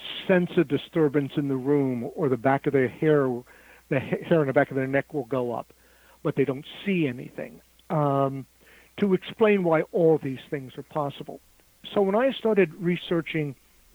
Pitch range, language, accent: 135-170 Hz, English, American